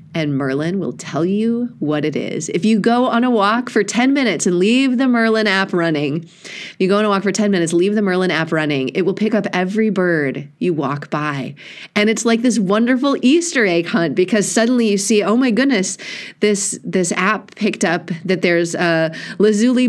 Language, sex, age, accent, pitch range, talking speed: English, female, 30-49, American, 175-230 Hz, 210 wpm